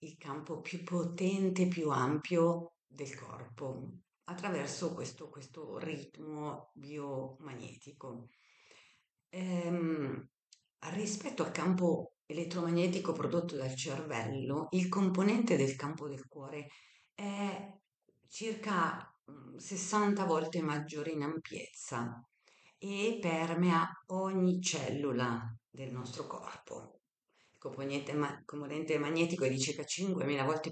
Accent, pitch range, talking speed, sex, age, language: native, 135-170 Hz, 100 wpm, female, 50-69, Italian